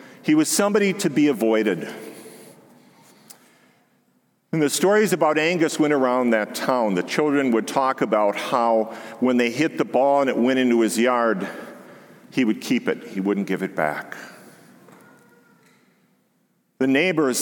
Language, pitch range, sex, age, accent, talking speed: English, 110-150 Hz, male, 50-69, American, 150 wpm